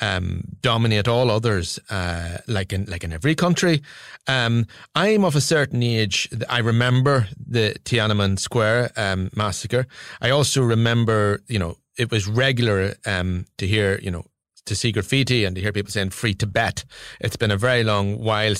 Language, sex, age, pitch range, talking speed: English, male, 30-49, 105-130 Hz, 170 wpm